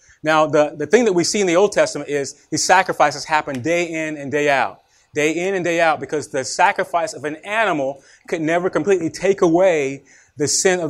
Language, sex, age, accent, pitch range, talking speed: English, male, 30-49, American, 140-175 Hz, 215 wpm